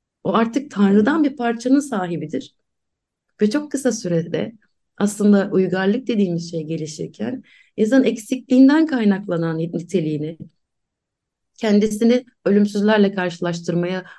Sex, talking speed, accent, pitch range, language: female, 95 wpm, native, 170-210 Hz, Turkish